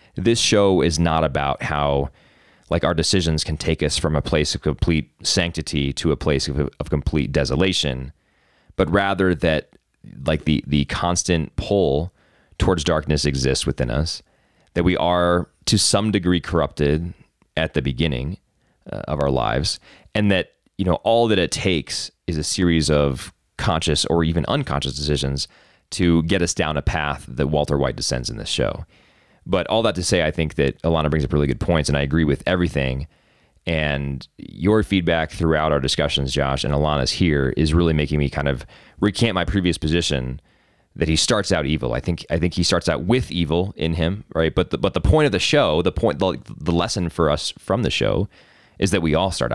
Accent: American